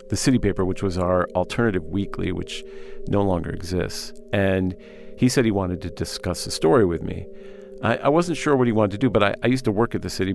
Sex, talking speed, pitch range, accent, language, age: male, 240 wpm, 95-130 Hz, American, English, 50-69